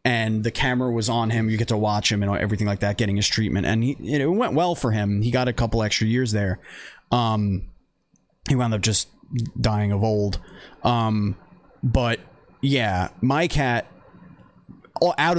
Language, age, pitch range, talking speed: English, 30-49, 105-125 Hz, 175 wpm